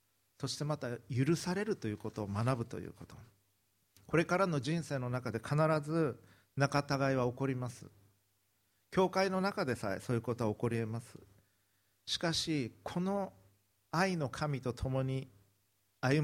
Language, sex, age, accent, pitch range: Japanese, male, 50-69, native, 105-145 Hz